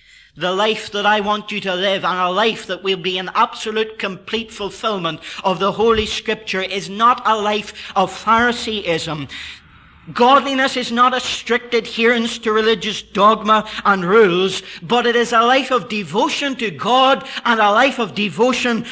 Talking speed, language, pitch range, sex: 170 wpm, English, 165-225 Hz, male